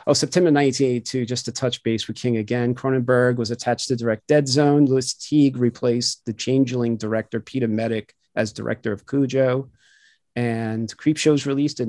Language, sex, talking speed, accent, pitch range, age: English, male, 165 wpm, American, 120-140 Hz, 40-59